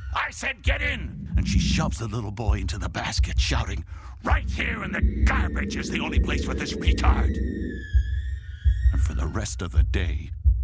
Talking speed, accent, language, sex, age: 185 wpm, American, English, male, 60-79